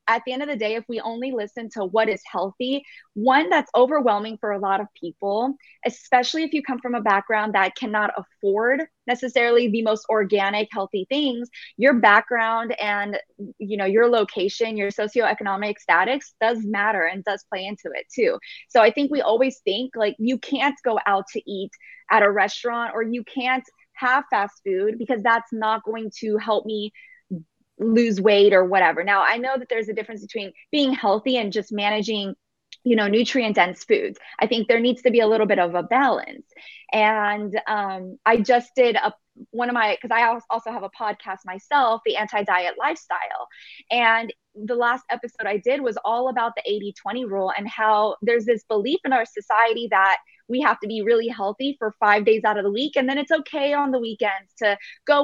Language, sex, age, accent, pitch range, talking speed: English, female, 20-39, American, 205-250 Hz, 200 wpm